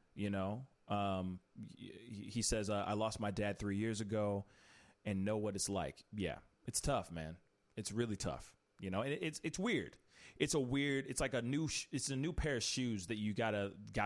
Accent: American